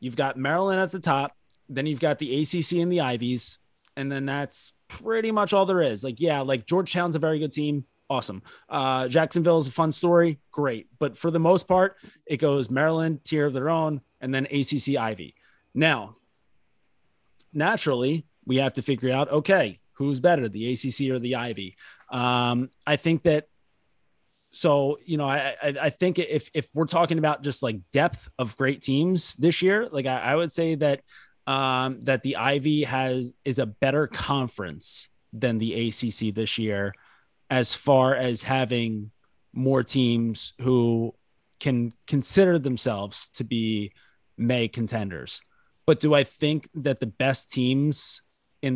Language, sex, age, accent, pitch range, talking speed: English, male, 30-49, American, 125-150 Hz, 165 wpm